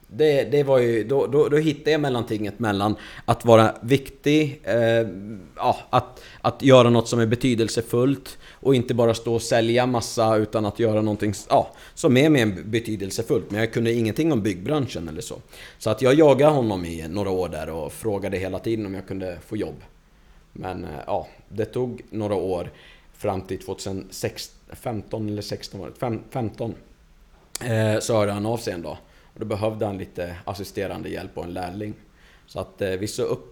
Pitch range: 100-115 Hz